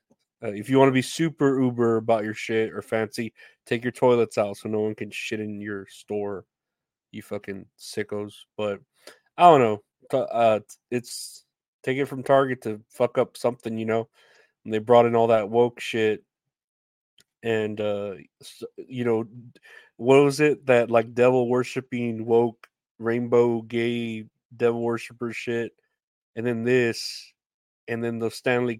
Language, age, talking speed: English, 30-49, 160 wpm